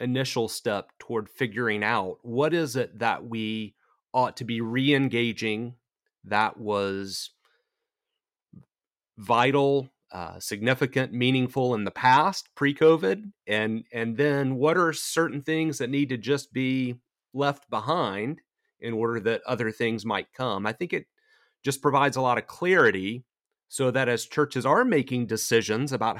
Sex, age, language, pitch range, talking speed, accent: male, 40-59, English, 110-140 Hz, 135 wpm, American